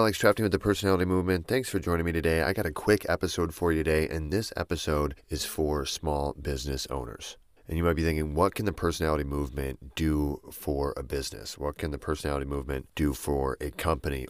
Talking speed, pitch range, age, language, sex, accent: 210 wpm, 75-85 Hz, 30-49, English, male, American